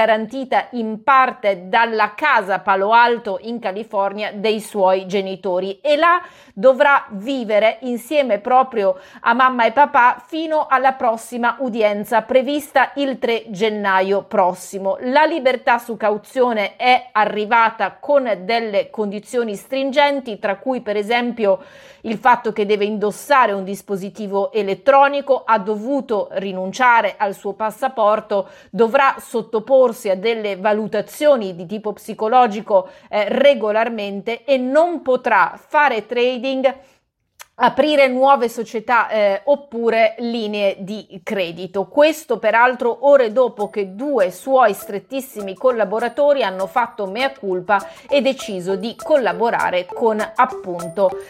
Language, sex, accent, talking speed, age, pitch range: Italian, female, native, 115 wpm, 40-59, 205-265 Hz